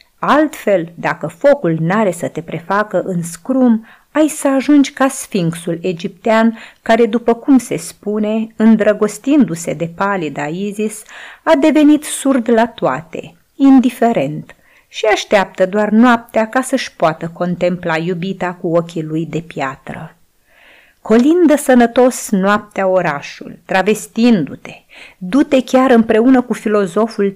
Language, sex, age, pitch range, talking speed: Romanian, female, 30-49, 175-240 Hz, 120 wpm